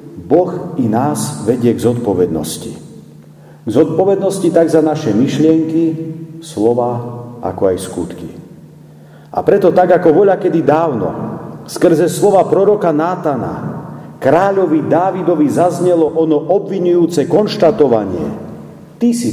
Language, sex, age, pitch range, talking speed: Slovak, male, 50-69, 115-160 Hz, 110 wpm